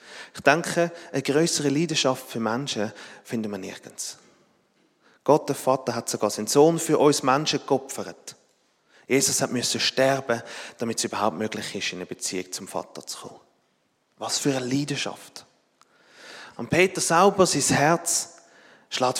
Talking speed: 145 wpm